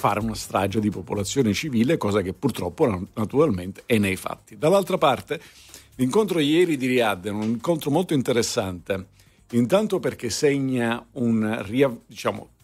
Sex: male